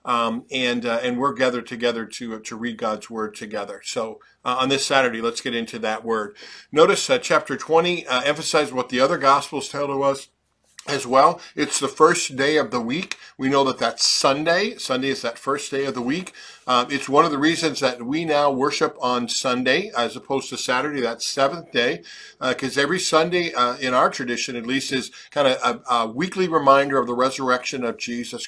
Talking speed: 210 wpm